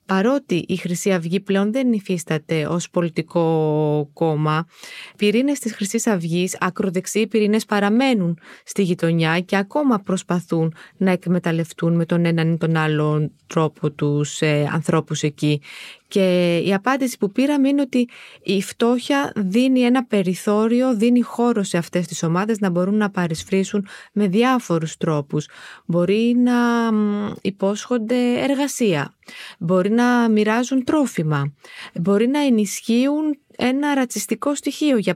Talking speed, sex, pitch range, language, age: 130 wpm, female, 170-235 Hz, Greek, 20-39